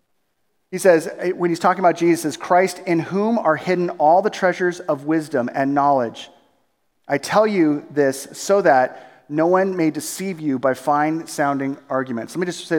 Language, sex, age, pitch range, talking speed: English, male, 30-49, 150-190 Hz, 175 wpm